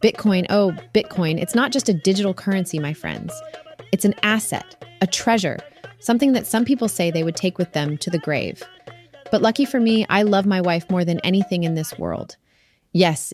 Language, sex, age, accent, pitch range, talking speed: English, female, 30-49, American, 165-205 Hz, 200 wpm